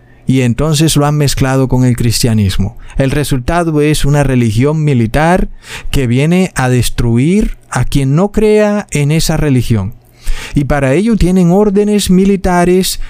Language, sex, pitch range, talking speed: Spanish, male, 125-170 Hz, 140 wpm